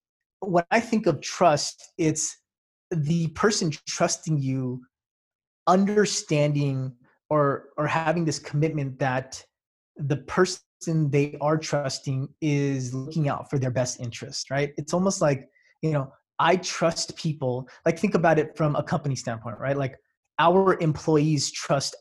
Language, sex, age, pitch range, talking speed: English, male, 20-39, 135-165 Hz, 140 wpm